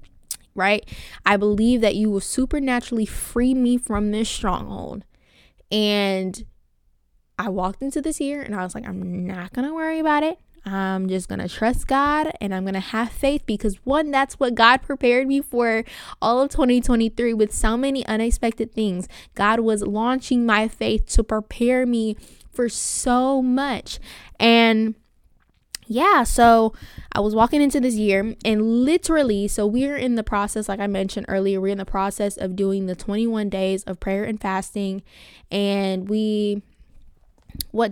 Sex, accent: female, American